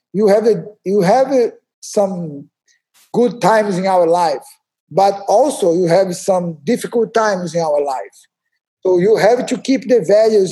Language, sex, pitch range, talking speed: English, male, 180-235 Hz, 165 wpm